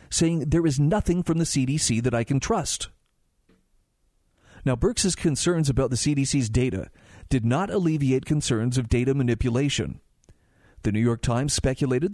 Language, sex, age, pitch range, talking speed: English, male, 40-59, 125-175 Hz, 150 wpm